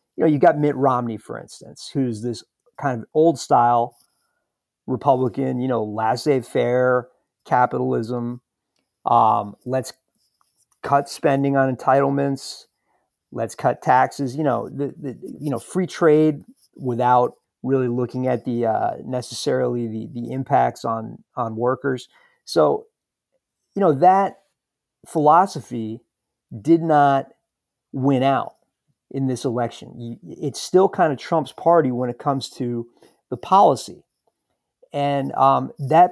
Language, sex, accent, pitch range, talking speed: English, male, American, 125-150 Hz, 130 wpm